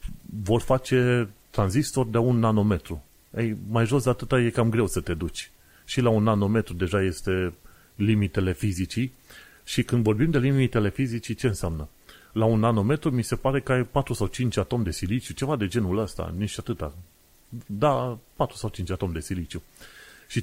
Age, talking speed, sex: 30-49, 180 wpm, male